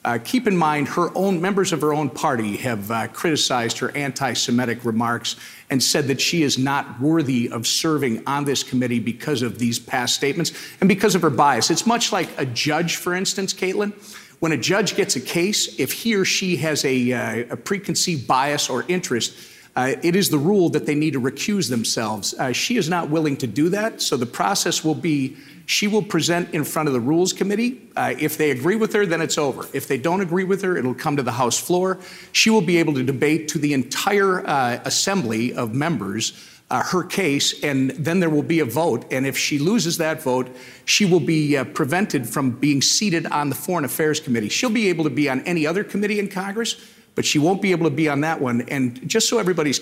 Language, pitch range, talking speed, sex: English, 130-185 Hz, 225 wpm, male